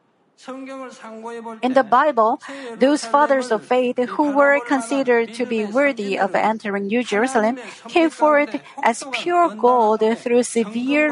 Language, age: Korean, 50-69